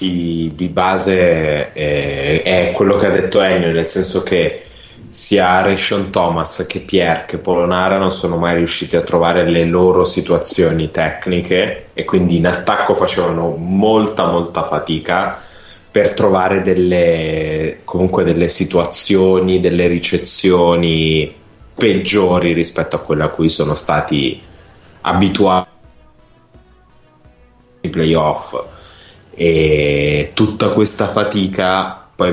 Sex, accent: male, native